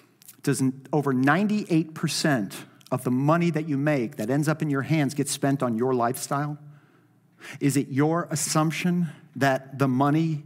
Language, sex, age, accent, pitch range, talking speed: English, male, 50-69, American, 135-180 Hz, 155 wpm